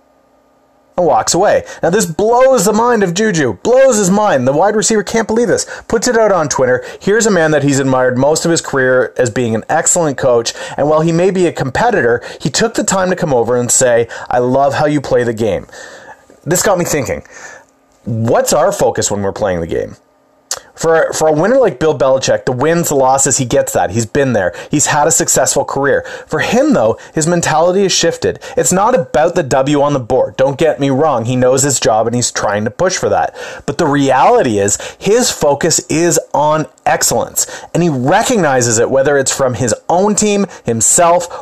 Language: English